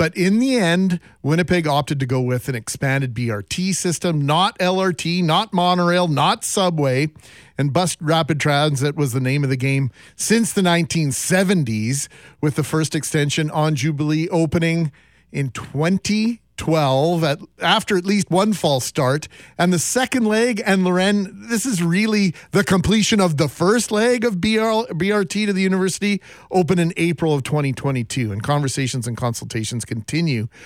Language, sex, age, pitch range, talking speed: English, male, 40-59, 135-180 Hz, 160 wpm